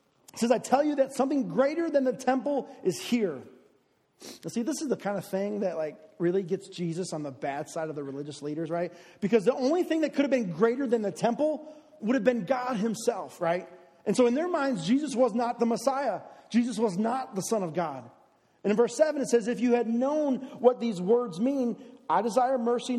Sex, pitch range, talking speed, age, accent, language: male, 180-245 Hz, 225 wpm, 40-59, American, Russian